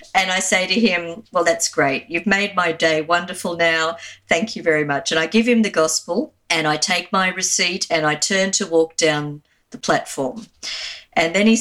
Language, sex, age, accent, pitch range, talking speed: English, female, 50-69, Australian, 160-220 Hz, 205 wpm